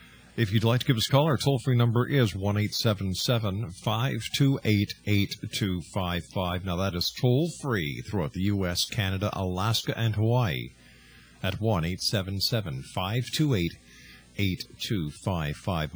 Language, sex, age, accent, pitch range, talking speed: English, male, 50-69, American, 95-125 Hz, 100 wpm